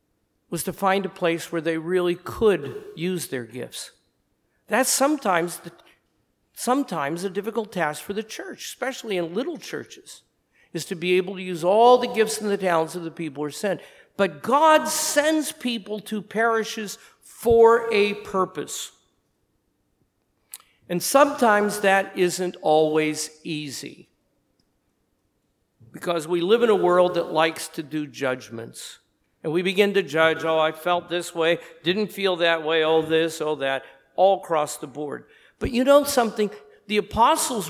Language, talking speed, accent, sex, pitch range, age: English, 155 wpm, American, male, 160-210 Hz, 50-69